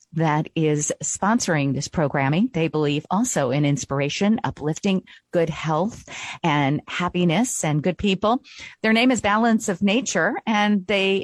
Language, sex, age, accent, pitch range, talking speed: English, female, 40-59, American, 150-205 Hz, 140 wpm